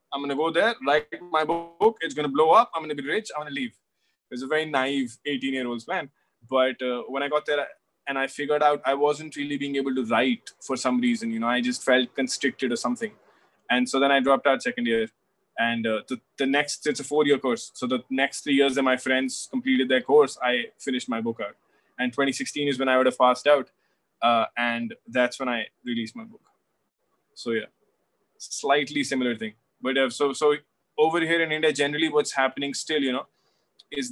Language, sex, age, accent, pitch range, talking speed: English, male, 20-39, Indian, 125-155 Hz, 220 wpm